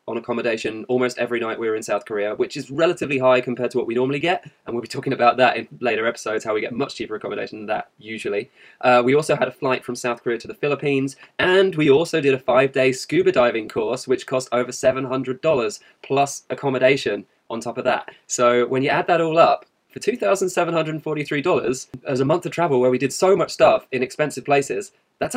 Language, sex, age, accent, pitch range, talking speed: English, male, 20-39, British, 130-175 Hz, 220 wpm